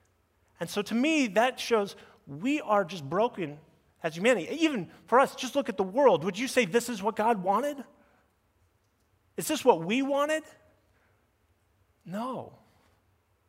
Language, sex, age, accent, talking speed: English, male, 30-49, American, 150 wpm